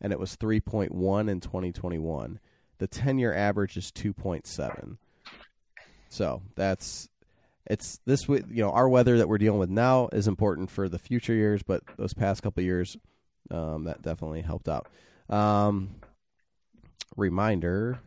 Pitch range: 90-110 Hz